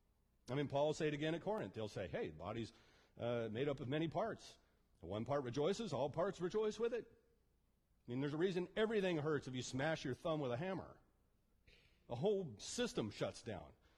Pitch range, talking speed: 110-145 Hz, 210 wpm